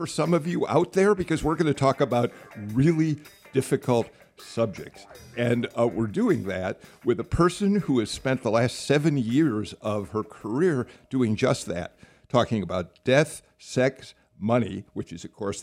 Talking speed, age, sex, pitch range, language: 175 wpm, 50-69, male, 110-145 Hz, English